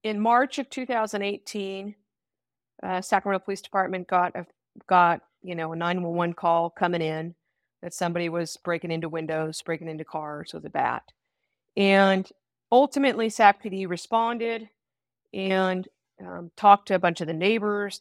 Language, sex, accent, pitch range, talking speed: English, female, American, 165-195 Hz, 145 wpm